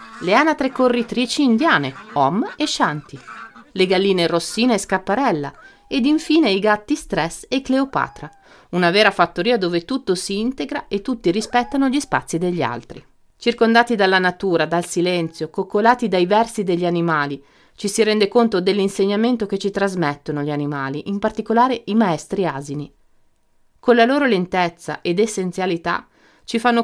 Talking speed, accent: 150 wpm, native